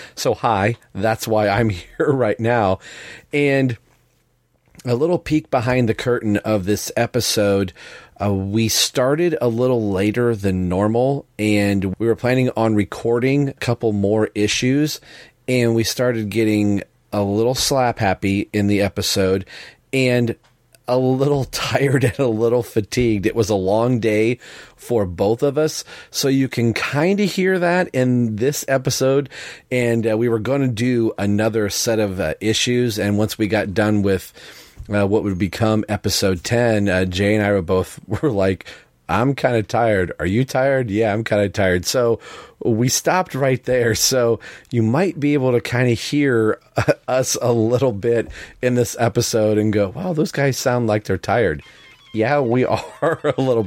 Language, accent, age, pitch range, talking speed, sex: English, American, 40-59, 105-130 Hz, 170 wpm, male